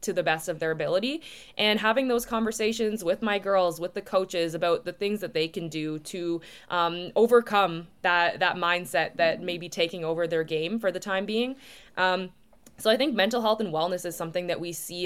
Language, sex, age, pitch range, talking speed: English, female, 20-39, 170-195 Hz, 210 wpm